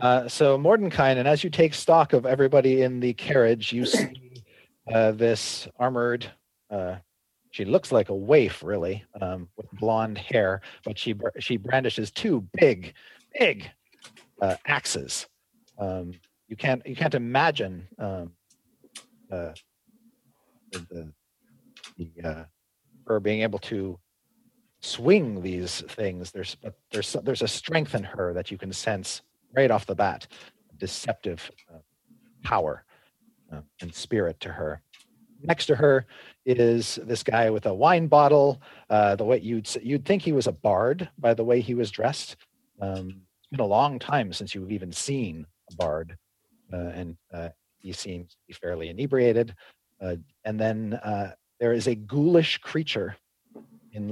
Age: 40-59